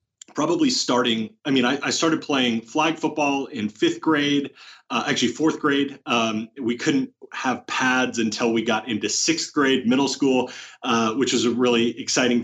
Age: 30-49